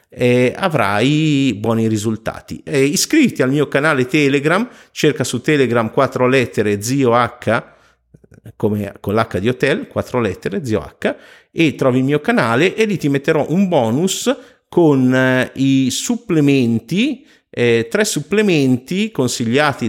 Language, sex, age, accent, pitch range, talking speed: Italian, male, 50-69, native, 105-140 Hz, 120 wpm